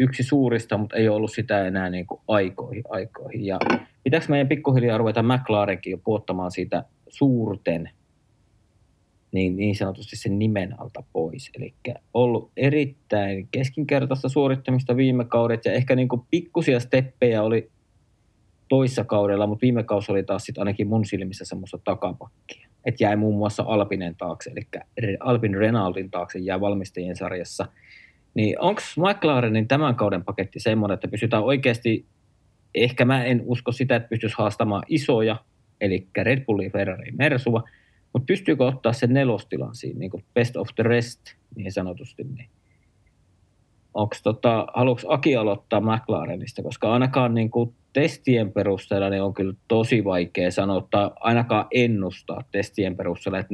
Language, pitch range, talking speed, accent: Finnish, 100-125 Hz, 135 wpm, native